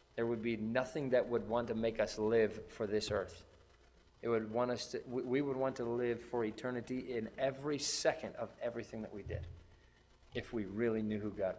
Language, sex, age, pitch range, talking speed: English, male, 20-39, 80-115 Hz, 205 wpm